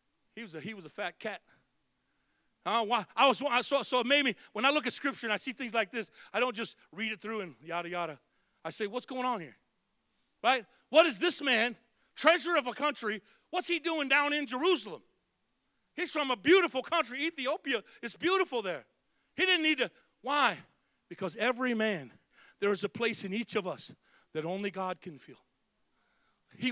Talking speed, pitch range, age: 200 wpm, 200-270 Hz, 40-59